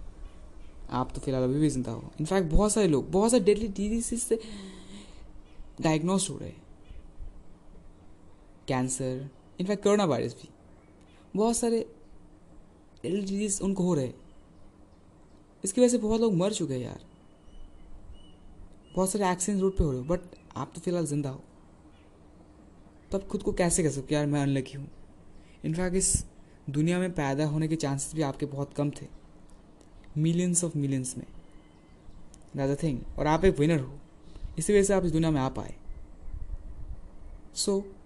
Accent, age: native, 20-39